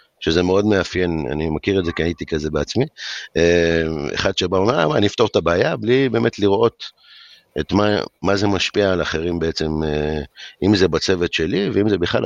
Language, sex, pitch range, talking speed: Hebrew, male, 80-100 Hz, 180 wpm